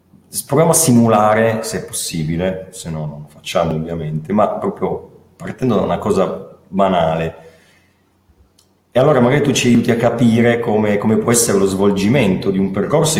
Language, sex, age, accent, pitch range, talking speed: Italian, male, 30-49, native, 90-115 Hz, 165 wpm